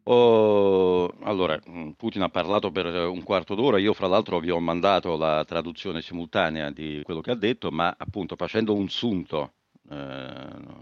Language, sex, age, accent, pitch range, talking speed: Italian, male, 40-59, native, 85-115 Hz, 155 wpm